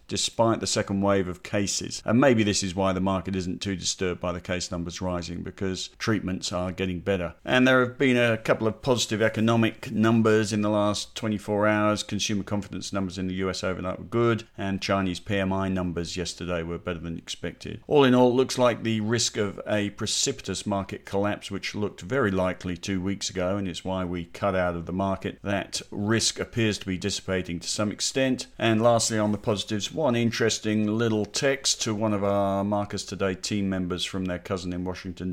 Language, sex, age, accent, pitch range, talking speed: English, male, 50-69, British, 90-105 Hz, 200 wpm